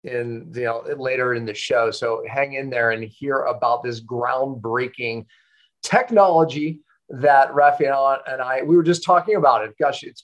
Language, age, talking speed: English, 40-59, 170 wpm